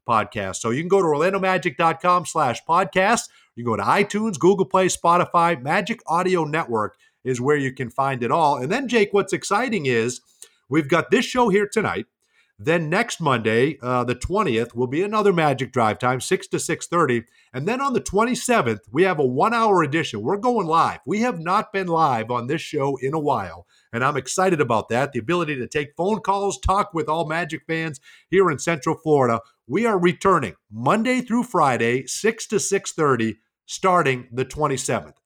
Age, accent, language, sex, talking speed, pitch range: 50-69, American, English, male, 185 wpm, 130-190 Hz